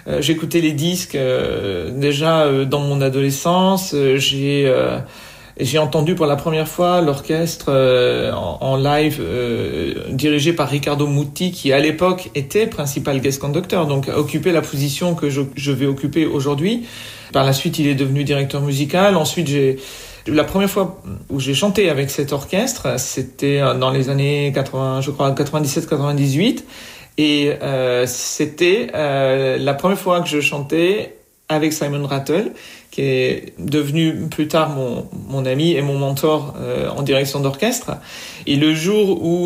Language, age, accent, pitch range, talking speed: French, 40-59, French, 140-165 Hz, 160 wpm